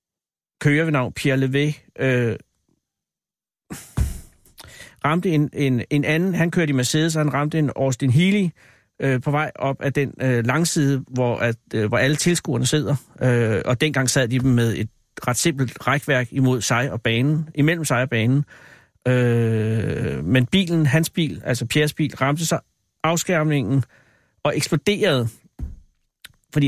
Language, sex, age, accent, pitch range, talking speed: Danish, male, 60-79, native, 125-155 Hz, 150 wpm